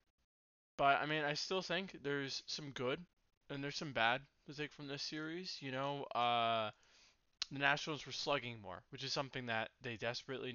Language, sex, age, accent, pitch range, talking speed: English, male, 20-39, American, 115-140 Hz, 180 wpm